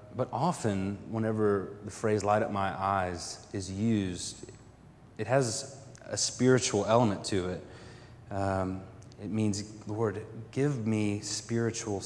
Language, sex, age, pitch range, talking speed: English, male, 30-49, 105-125 Hz, 125 wpm